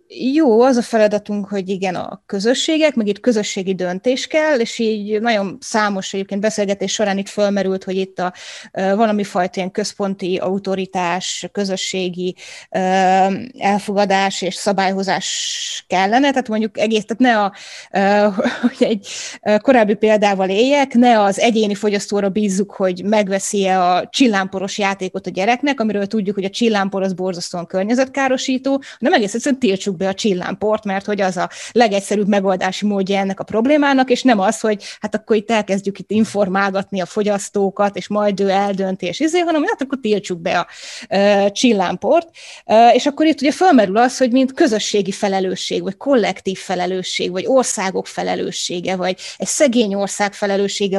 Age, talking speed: 20-39, 155 wpm